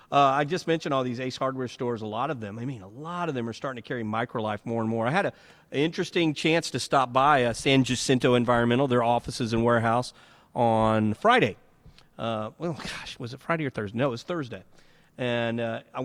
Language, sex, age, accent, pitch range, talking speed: English, male, 40-59, American, 110-130 Hz, 230 wpm